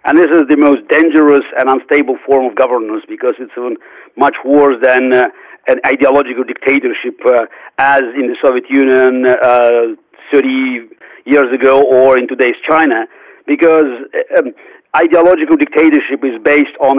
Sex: male